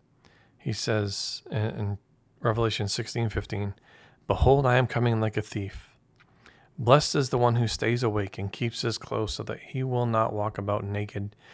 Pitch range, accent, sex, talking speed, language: 110-135 Hz, American, male, 160 wpm, English